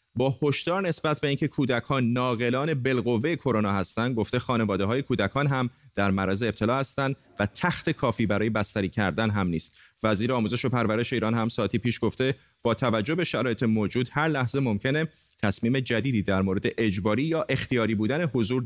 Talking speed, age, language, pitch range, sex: 170 wpm, 30-49, Persian, 110-140 Hz, male